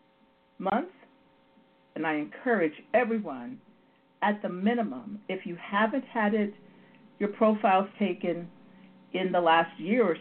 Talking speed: 125 wpm